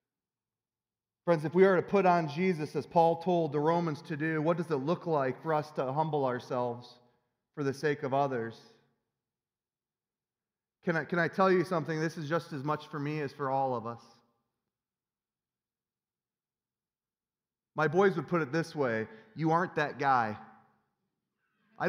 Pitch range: 150-210 Hz